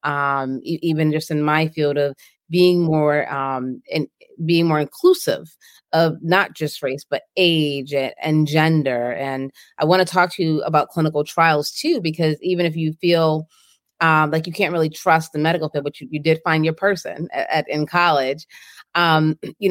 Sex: female